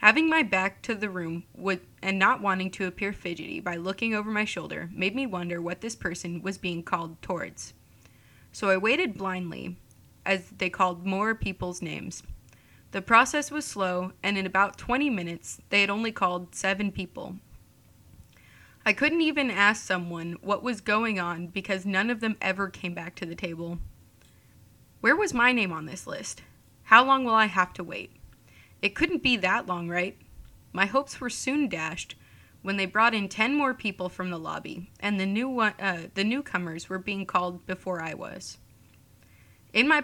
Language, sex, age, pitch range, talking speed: English, female, 20-39, 175-215 Hz, 180 wpm